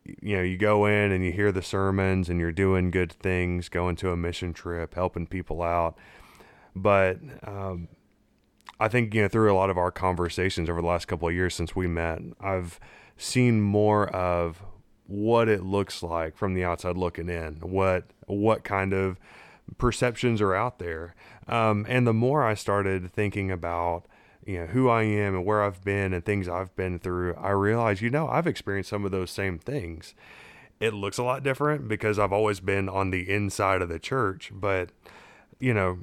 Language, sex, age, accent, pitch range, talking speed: English, male, 20-39, American, 90-105 Hz, 190 wpm